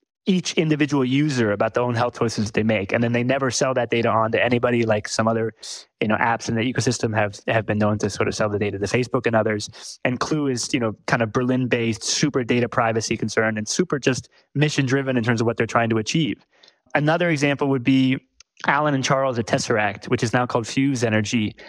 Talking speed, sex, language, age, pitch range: 225 wpm, male, English, 20-39, 110-135 Hz